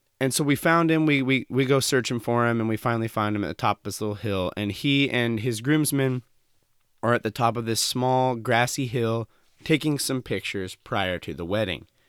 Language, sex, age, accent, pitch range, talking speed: English, male, 30-49, American, 105-135 Hz, 225 wpm